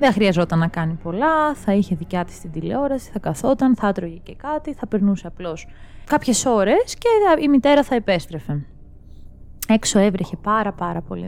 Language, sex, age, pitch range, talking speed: Greek, female, 20-39, 175-250 Hz, 170 wpm